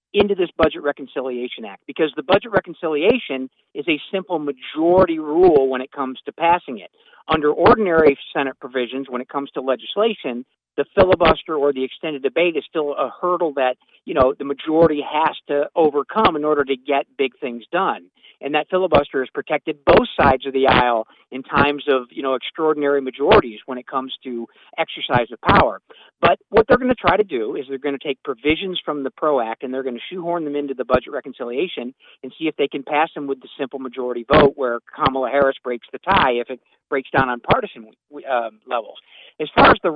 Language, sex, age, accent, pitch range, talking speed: English, male, 50-69, American, 130-170 Hz, 205 wpm